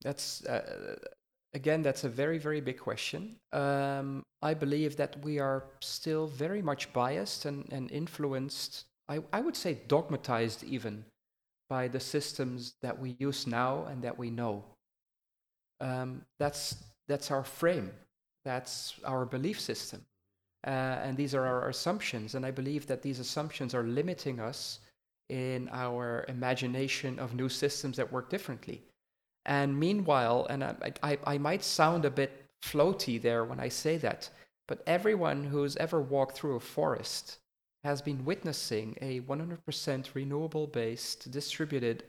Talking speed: 145 wpm